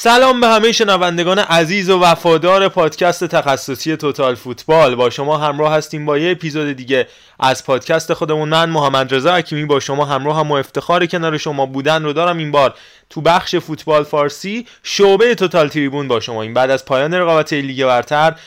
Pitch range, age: 135-160 Hz, 20-39